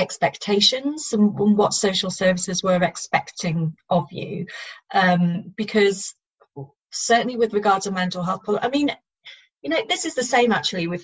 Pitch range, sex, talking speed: 180-230 Hz, female, 145 wpm